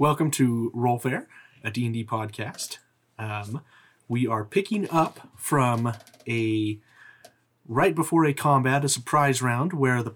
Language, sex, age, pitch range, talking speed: English, male, 30-49, 115-135 Hz, 130 wpm